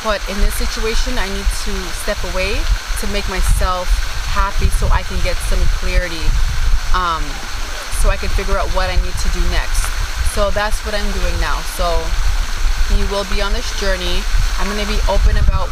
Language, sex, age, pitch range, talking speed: English, female, 20-39, 75-95 Hz, 190 wpm